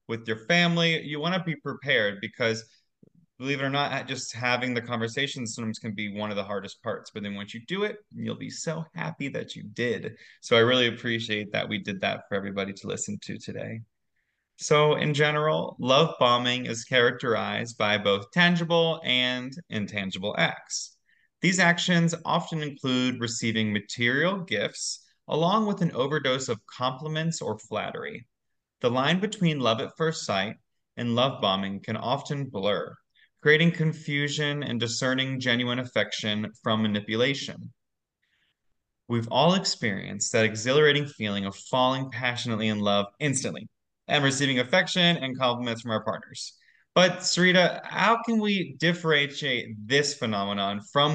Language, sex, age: English, male, 30-49